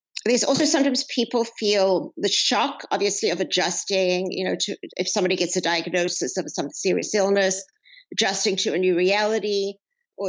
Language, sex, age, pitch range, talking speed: English, female, 50-69, 190-245 Hz, 165 wpm